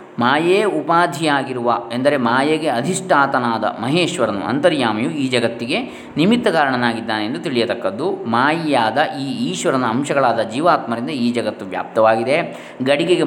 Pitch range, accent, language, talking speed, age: 115-155 Hz, native, Kannada, 95 wpm, 20-39